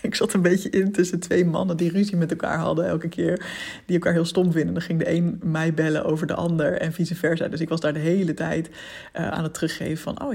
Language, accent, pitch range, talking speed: Dutch, Dutch, 160-190 Hz, 260 wpm